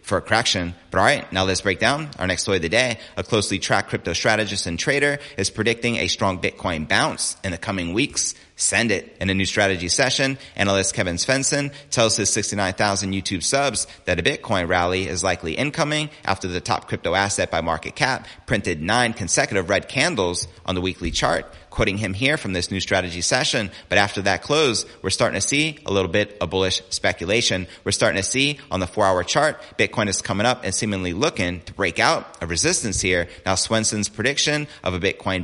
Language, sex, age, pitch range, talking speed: English, male, 30-49, 90-110 Hz, 205 wpm